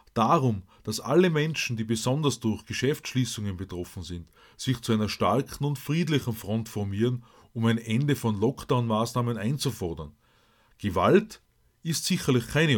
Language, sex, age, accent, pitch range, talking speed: German, male, 30-49, Austrian, 110-140 Hz, 130 wpm